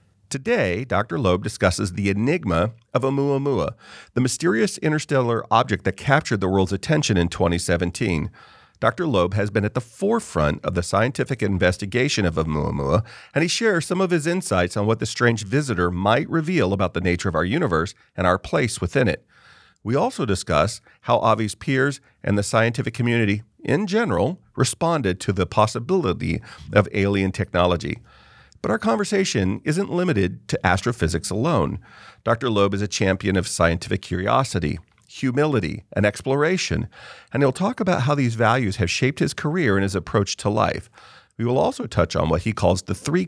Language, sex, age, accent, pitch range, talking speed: English, male, 40-59, American, 95-135 Hz, 170 wpm